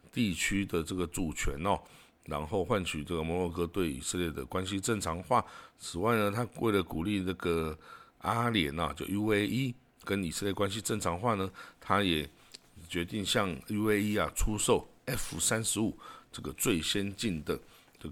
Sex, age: male, 50-69